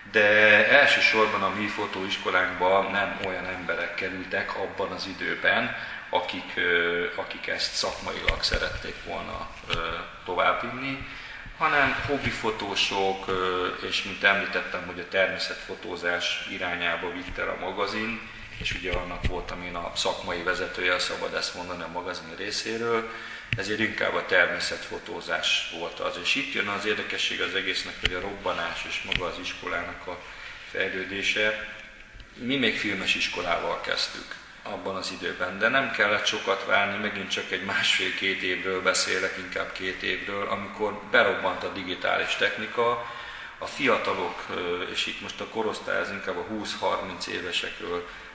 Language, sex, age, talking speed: Hungarian, male, 30-49, 135 wpm